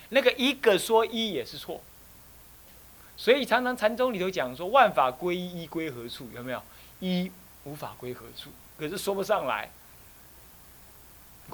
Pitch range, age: 125-210 Hz, 30-49